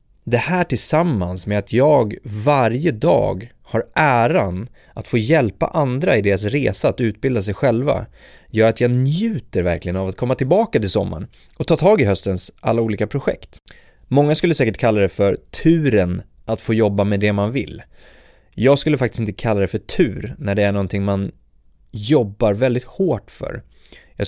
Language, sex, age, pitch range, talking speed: Swedish, male, 30-49, 100-140 Hz, 180 wpm